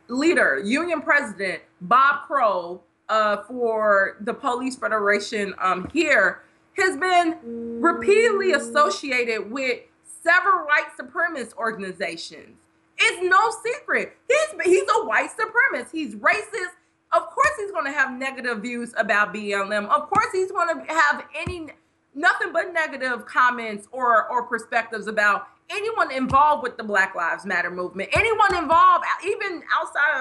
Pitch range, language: 240-350 Hz, English